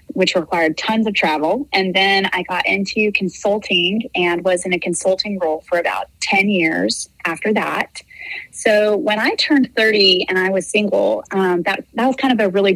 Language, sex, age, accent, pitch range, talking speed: English, female, 20-39, American, 180-215 Hz, 190 wpm